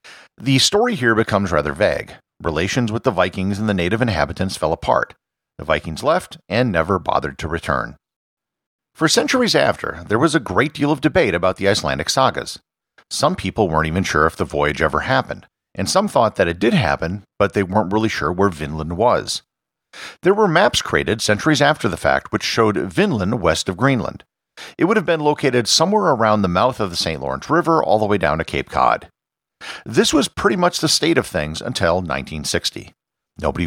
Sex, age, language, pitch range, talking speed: male, 50-69, English, 85-125 Hz, 195 wpm